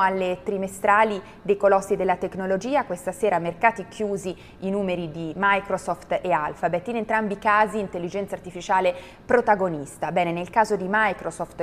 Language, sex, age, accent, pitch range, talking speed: Italian, female, 20-39, native, 175-205 Hz, 145 wpm